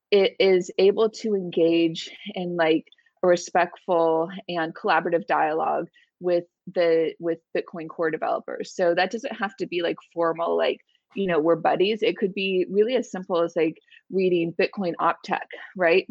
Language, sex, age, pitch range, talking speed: English, female, 20-39, 165-200 Hz, 160 wpm